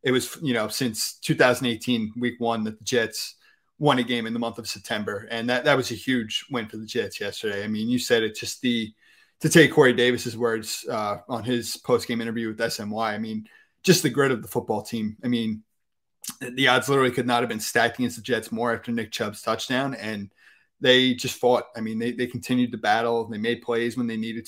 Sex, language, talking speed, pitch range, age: male, English, 230 wpm, 115-125 Hz, 30-49